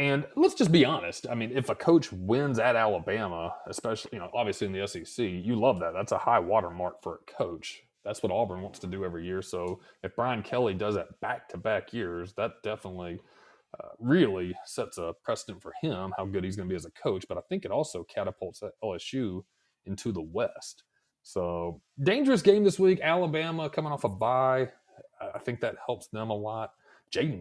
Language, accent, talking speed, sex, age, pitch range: English, American, 205 wpm, male, 30-49, 95-150 Hz